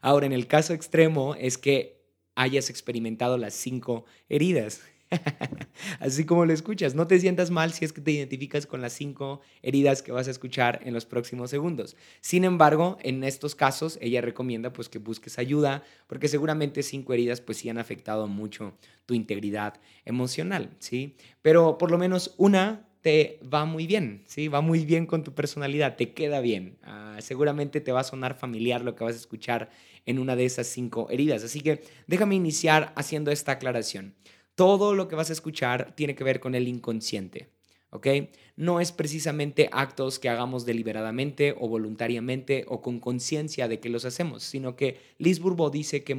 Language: Spanish